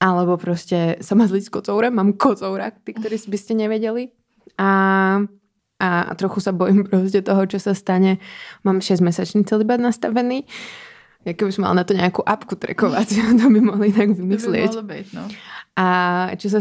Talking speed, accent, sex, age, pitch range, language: 150 wpm, native, female, 20-39, 170-195 Hz, Czech